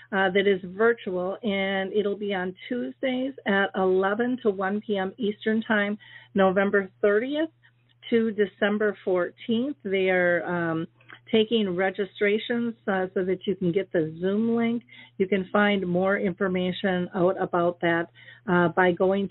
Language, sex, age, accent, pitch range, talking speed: English, female, 50-69, American, 185-220 Hz, 145 wpm